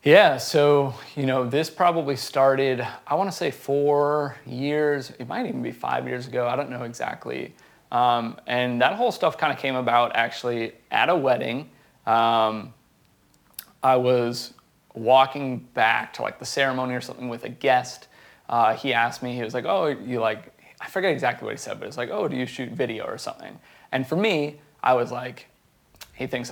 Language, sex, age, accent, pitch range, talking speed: English, male, 30-49, American, 125-145 Hz, 190 wpm